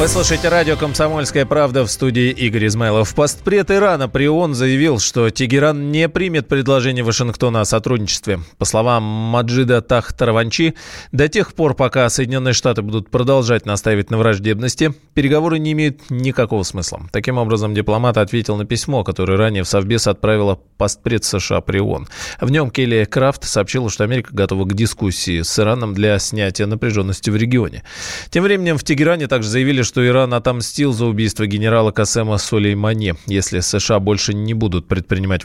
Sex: male